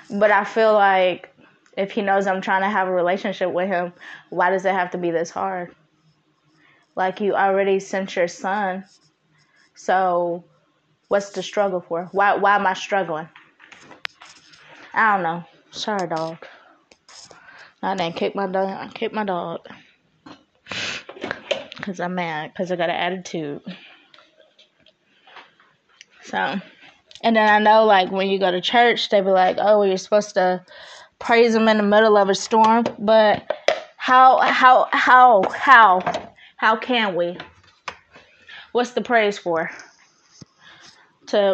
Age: 20-39